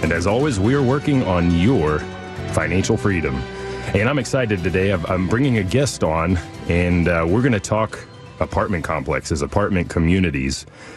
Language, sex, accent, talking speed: English, male, American, 150 wpm